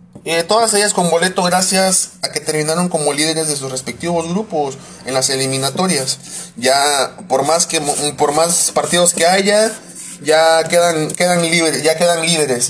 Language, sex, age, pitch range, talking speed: Spanish, male, 30-49, 150-185 Hz, 160 wpm